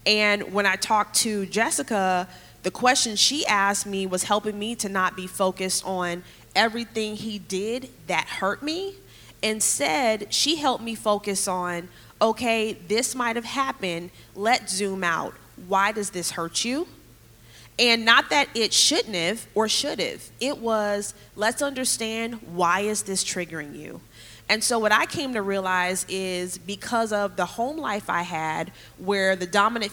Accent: American